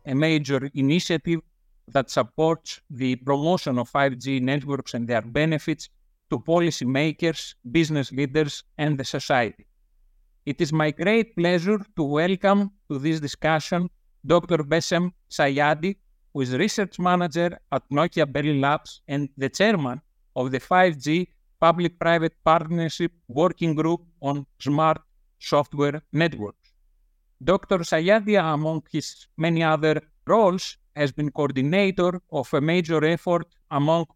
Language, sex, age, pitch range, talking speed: English, male, 50-69, 140-170 Hz, 125 wpm